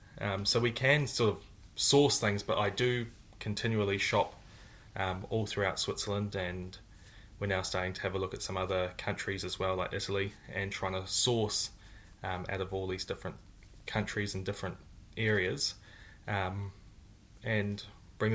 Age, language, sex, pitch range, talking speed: 10-29, English, male, 95-110 Hz, 165 wpm